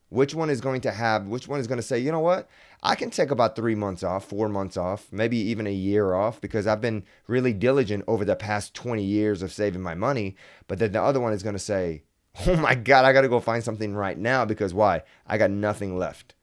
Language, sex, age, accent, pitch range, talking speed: English, male, 30-49, American, 95-120 Hz, 255 wpm